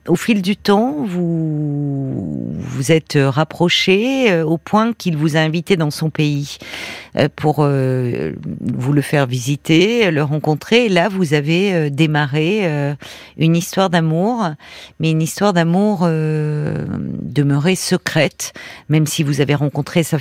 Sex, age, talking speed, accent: female, 50-69, 145 wpm, French